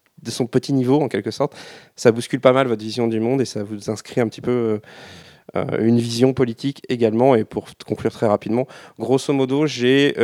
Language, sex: French, male